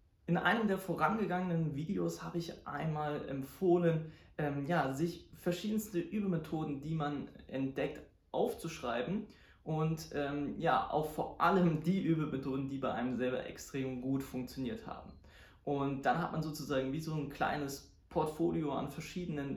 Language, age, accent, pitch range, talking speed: German, 20-39, German, 135-170 Hz, 140 wpm